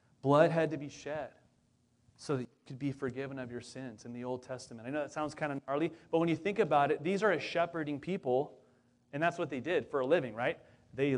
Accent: American